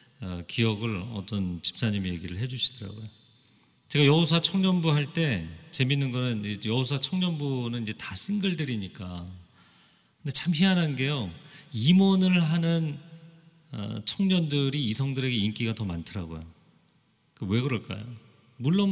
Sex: male